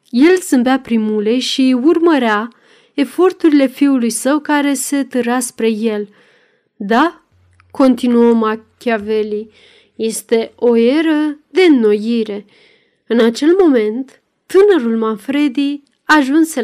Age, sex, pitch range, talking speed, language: 30-49, female, 225-290 Hz, 95 wpm, Romanian